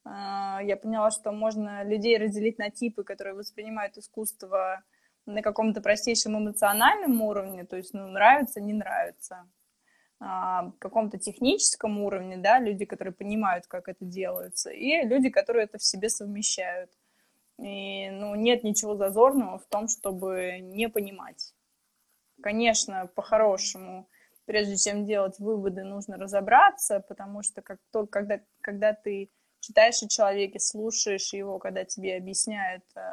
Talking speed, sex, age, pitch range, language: 125 wpm, female, 20-39, 195-220 Hz, Russian